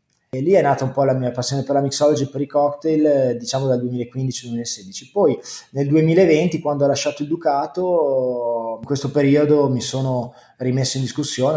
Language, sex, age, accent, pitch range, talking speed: Italian, male, 20-39, native, 120-150 Hz, 180 wpm